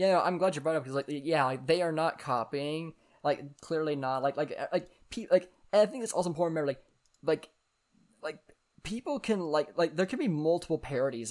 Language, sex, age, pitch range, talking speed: English, male, 10-29, 125-160 Hz, 230 wpm